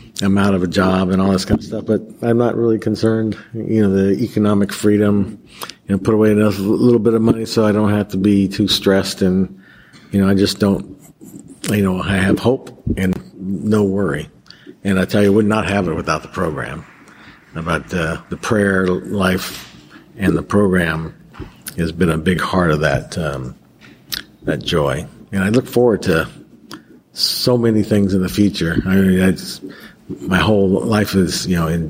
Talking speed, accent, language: 195 wpm, American, English